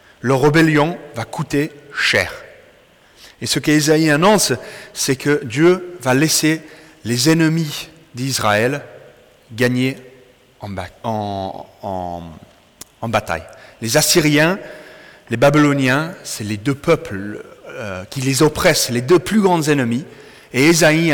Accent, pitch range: French, 120-165 Hz